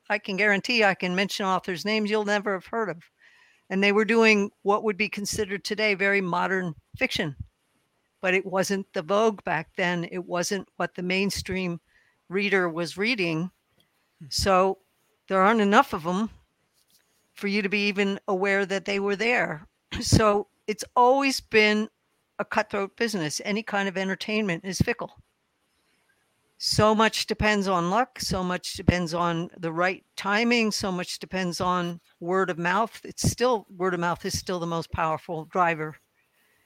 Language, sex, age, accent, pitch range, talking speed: English, female, 60-79, American, 185-215 Hz, 160 wpm